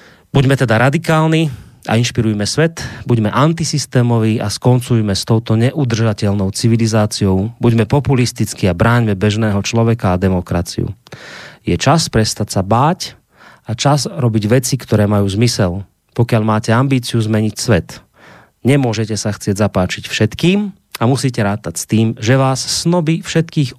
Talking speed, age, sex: 135 wpm, 30-49, male